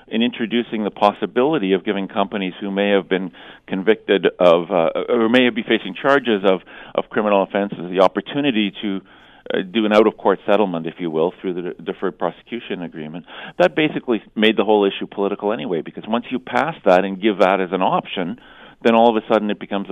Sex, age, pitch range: male, 50-69, 95-110 Hz